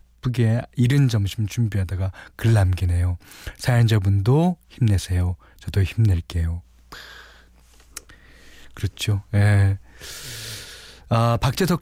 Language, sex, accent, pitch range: Korean, male, native, 95-135 Hz